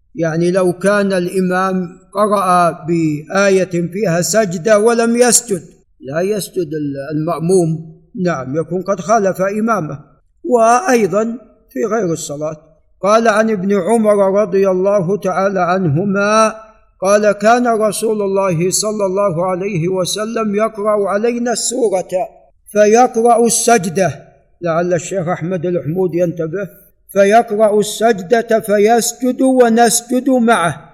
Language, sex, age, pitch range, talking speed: Arabic, male, 50-69, 180-225 Hz, 105 wpm